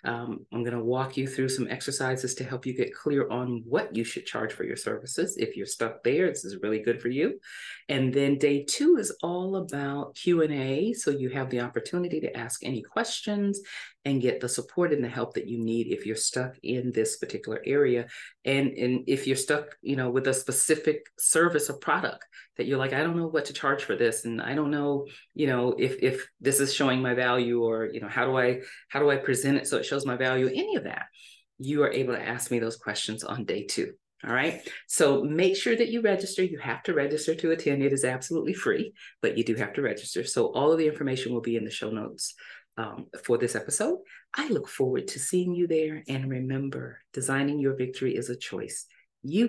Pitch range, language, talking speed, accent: 125-155 Hz, English, 230 wpm, American